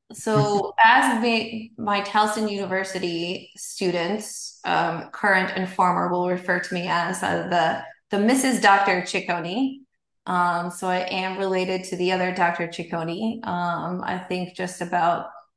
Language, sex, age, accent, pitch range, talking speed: English, female, 20-39, American, 180-215 Hz, 145 wpm